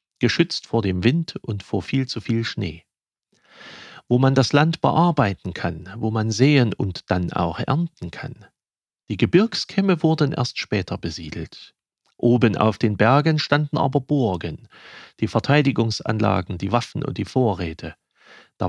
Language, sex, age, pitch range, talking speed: German, male, 40-59, 100-140 Hz, 145 wpm